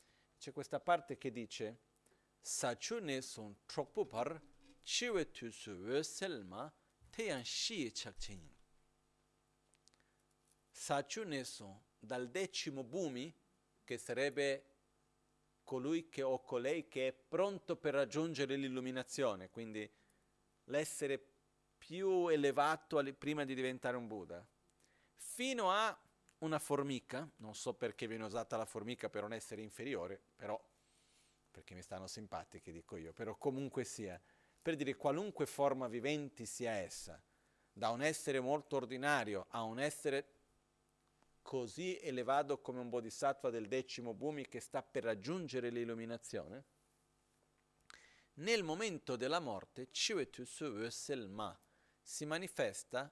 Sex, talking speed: male, 110 wpm